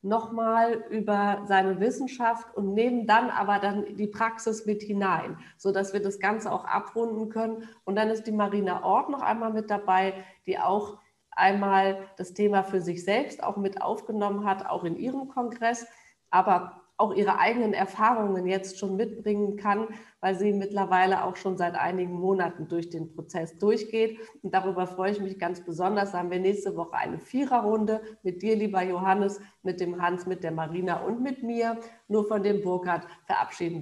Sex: female